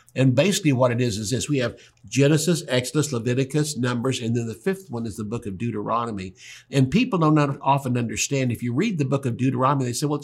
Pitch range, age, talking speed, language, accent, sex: 125-165 Hz, 60-79, 230 wpm, English, American, male